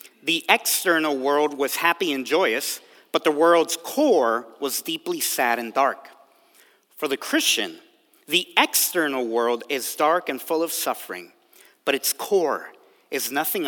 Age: 40-59